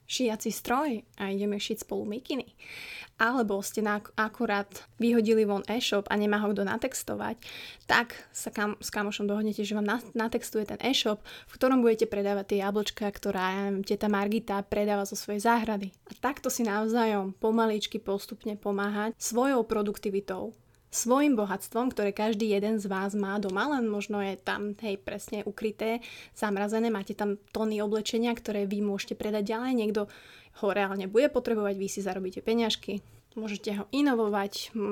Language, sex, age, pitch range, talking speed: Slovak, female, 20-39, 205-225 Hz, 155 wpm